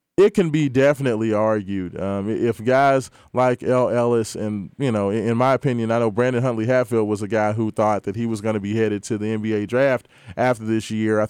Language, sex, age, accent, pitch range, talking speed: English, male, 20-39, American, 115-140 Hz, 225 wpm